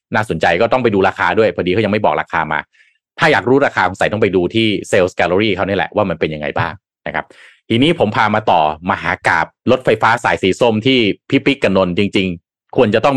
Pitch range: 95-135 Hz